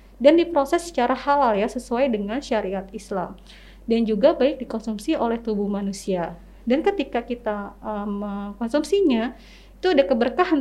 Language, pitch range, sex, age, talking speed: Indonesian, 215-290 Hz, female, 30-49, 135 wpm